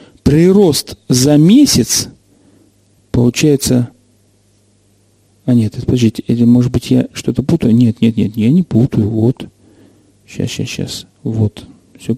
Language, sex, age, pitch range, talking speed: Russian, male, 40-59, 115-145 Hz, 120 wpm